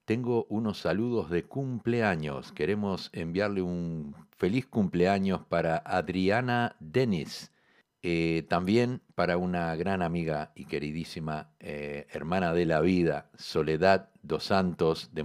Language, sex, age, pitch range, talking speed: Spanish, male, 50-69, 80-105 Hz, 120 wpm